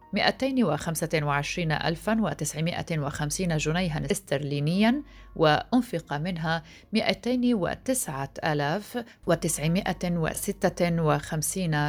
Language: Arabic